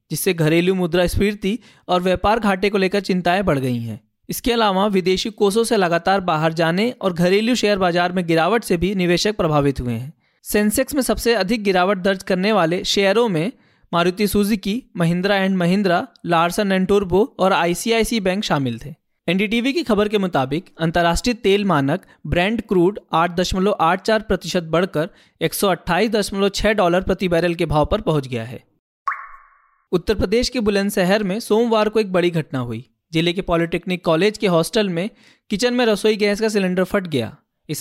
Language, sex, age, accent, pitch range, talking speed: Hindi, male, 20-39, native, 170-210 Hz, 165 wpm